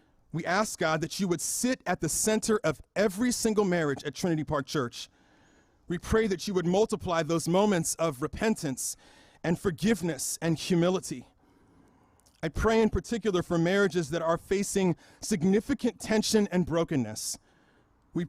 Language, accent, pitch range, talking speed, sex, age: English, American, 160-205 Hz, 150 wpm, male, 40-59